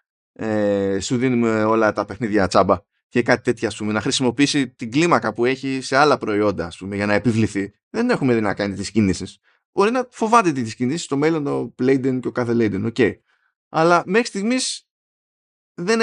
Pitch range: 105-145 Hz